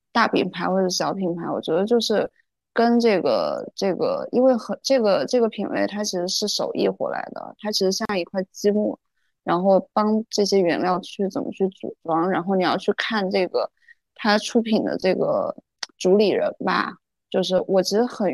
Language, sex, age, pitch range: Chinese, female, 20-39, 185-230 Hz